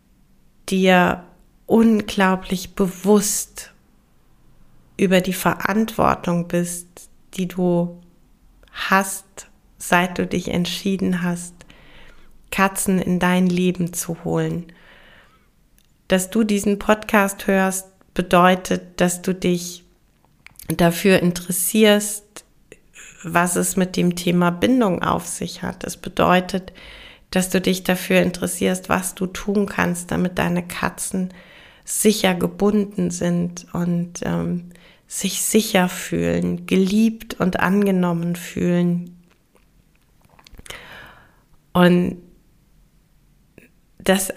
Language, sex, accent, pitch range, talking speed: German, female, German, 175-195 Hz, 95 wpm